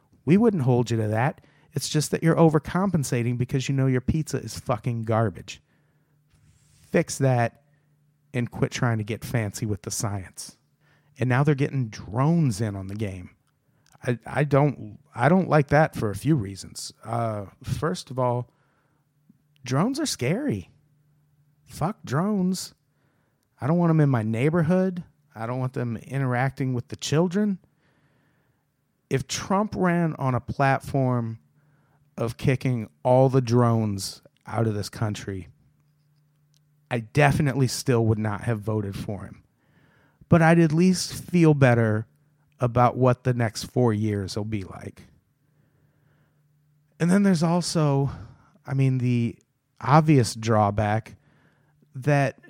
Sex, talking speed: male, 140 wpm